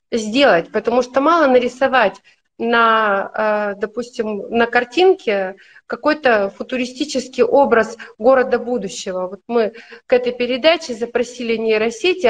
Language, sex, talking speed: Russian, female, 100 wpm